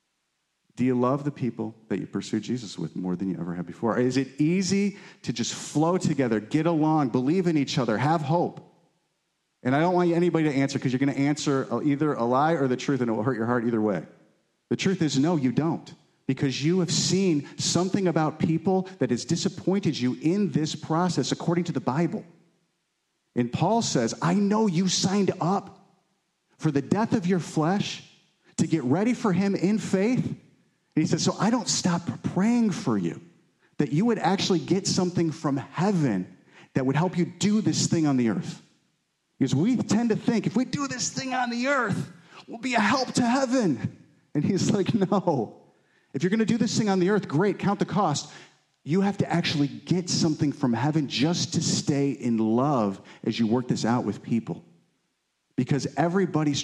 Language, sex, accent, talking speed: English, male, American, 200 wpm